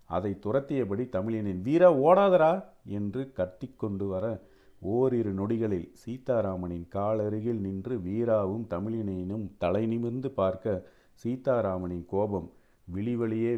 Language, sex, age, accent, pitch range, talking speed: Tamil, male, 40-59, native, 95-120 Hz, 90 wpm